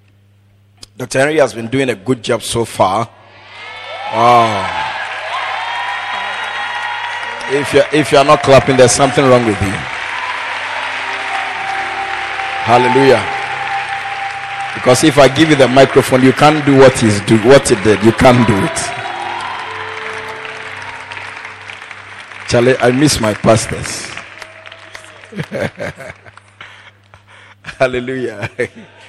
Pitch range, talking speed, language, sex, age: 100-130 Hz, 100 wpm, English, male, 50-69